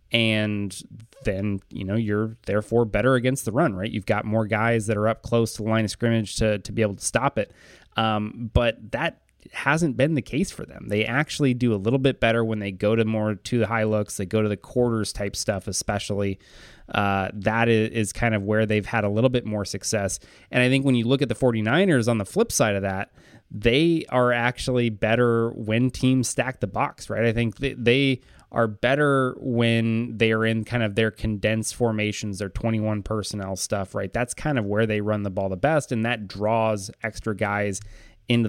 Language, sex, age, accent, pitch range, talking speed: English, male, 20-39, American, 105-120 Hz, 215 wpm